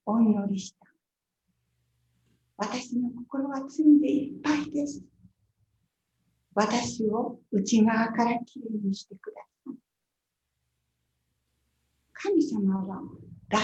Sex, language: female, Japanese